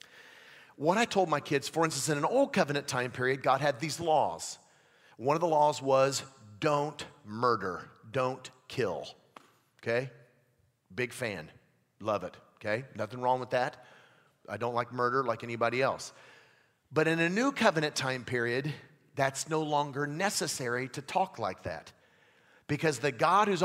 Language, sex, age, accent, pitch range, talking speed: English, male, 40-59, American, 130-180 Hz, 155 wpm